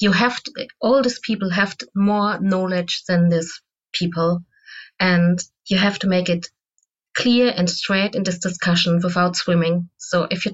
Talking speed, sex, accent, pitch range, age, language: 170 wpm, female, German, 175-220 Hz, 30-49, English